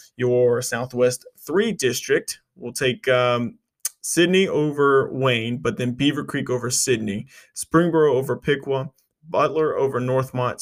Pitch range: 120-140 Hz